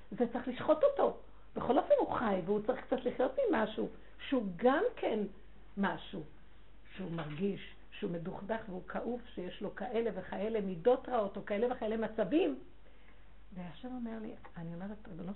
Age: 60-79